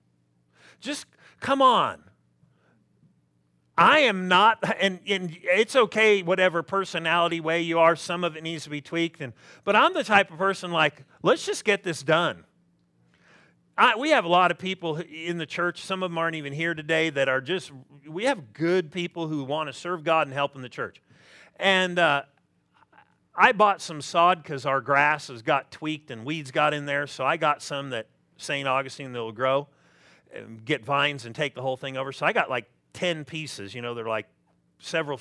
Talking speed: 195 wpm